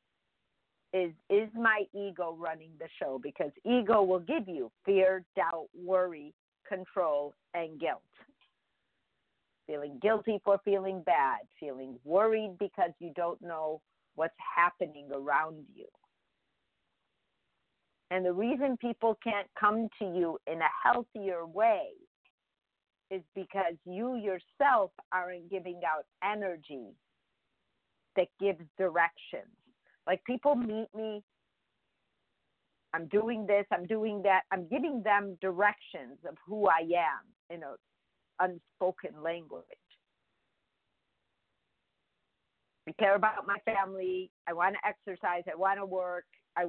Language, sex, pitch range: English, female, 170-210 Hz